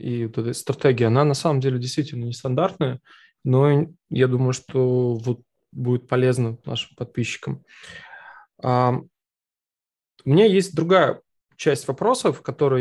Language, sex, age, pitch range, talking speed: Russian, male, 20-39, 130-165 Hz, 110 wpm